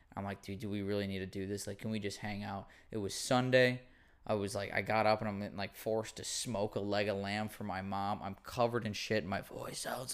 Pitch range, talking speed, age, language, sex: 100-125 Hz, 265 wpm, 20-39, English, male